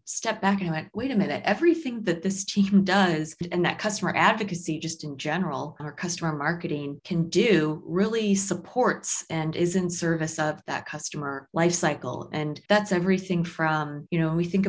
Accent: American